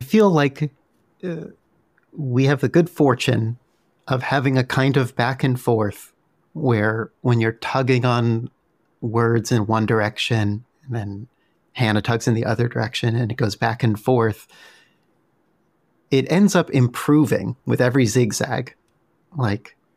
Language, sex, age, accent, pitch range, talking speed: English, male, 40-59, American, 115-145 Hz, 145 wpm